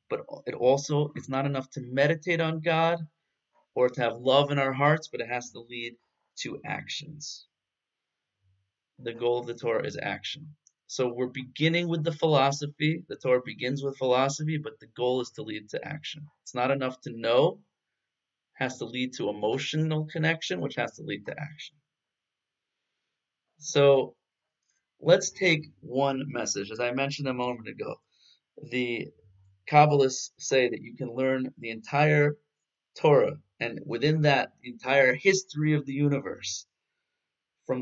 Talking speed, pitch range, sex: 155 wpm, 110-150 Hz, male